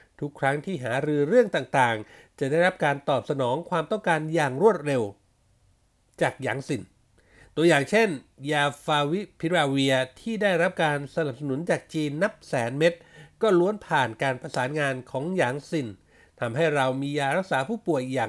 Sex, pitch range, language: male, 135-175 Hz, Thai